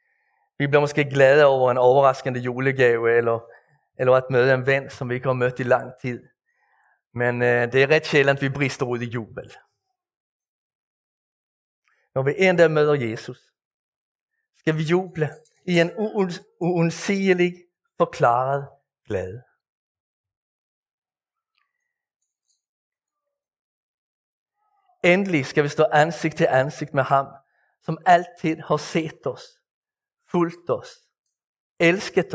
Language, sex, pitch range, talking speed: Danish, male, 140-215 Hz, 115 wpm